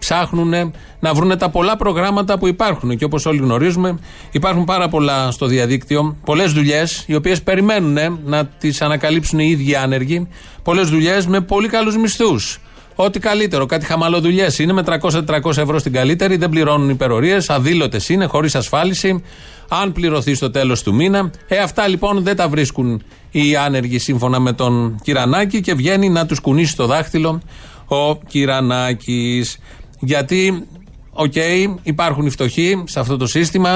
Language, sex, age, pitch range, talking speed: Greek, male, 30-49, 135-175 Hz, 155 wpm